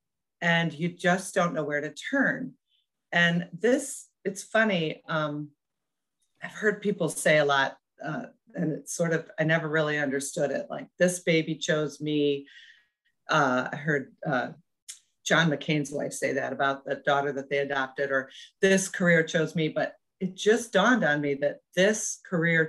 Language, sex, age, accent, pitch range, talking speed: English, female, 40-59, American, 145-180 Hz, 165 wpm